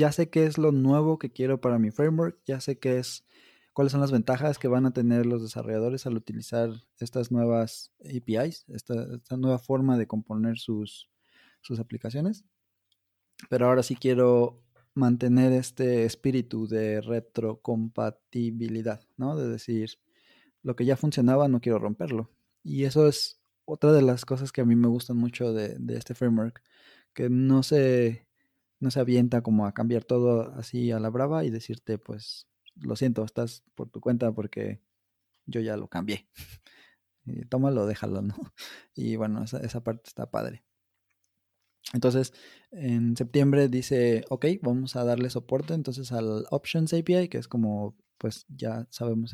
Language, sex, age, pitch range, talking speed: Spanish, male, 20-39, 110-130 Hz, 160 wpm